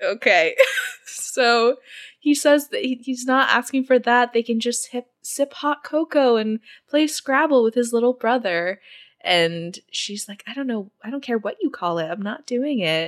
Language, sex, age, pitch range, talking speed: English, female, 20-39, 170-255 Hz, 185 wpm